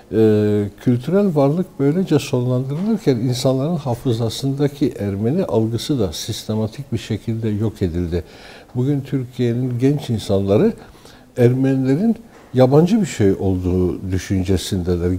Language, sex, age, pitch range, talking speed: Turkish, male, 60-79, 100-135 Hz, 100 wpm